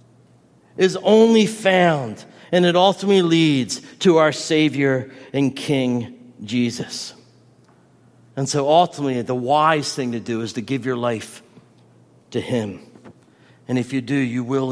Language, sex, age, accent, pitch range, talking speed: English, male, 50-69, American, 120-145 Hz, 140 wpm